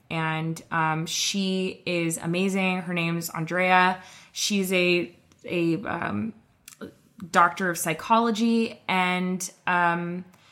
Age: 20-39